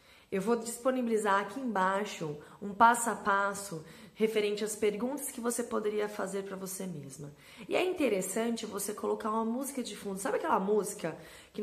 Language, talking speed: Portuguese, 165 wpm